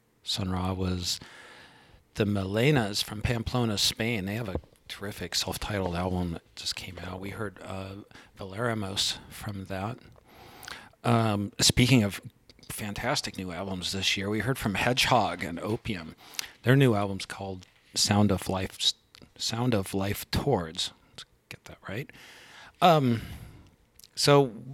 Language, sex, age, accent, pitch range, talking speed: English, male, 40-59, American, 90-115 Hz, 130 wpm